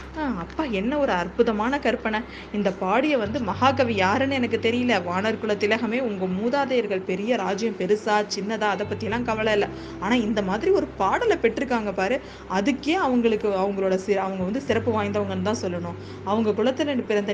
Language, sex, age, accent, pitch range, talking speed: Tamil, female, 20-39, native, 195-245 Hz, 155 wpm